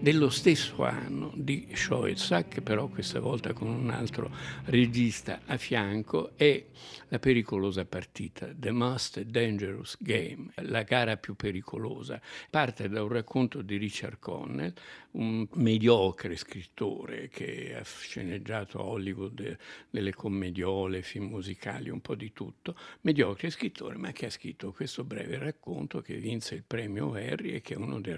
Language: Italian